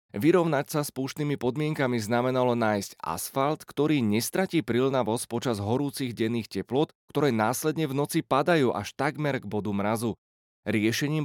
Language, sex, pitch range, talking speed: Slovak, male, 110-145 Hz, 140 wpm